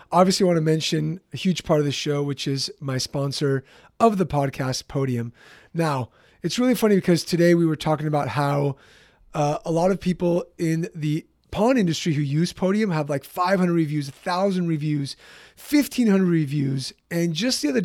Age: 30-49